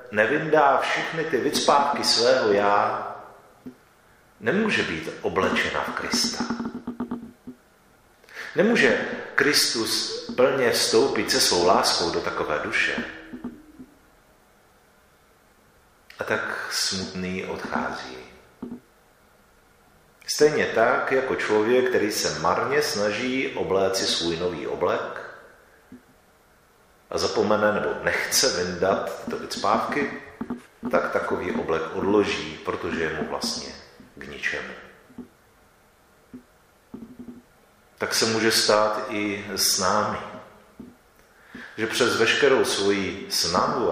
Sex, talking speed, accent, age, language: male, 90 wpm, native, 40-59, Czech